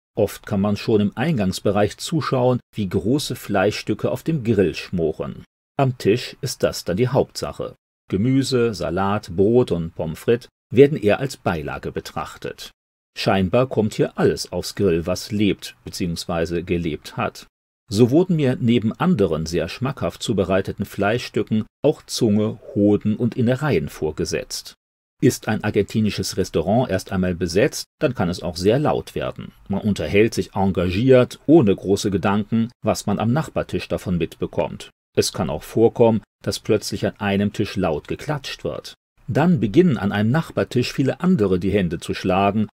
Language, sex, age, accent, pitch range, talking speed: German, male, 40-59, German, 95-125 Hz, 150 wpm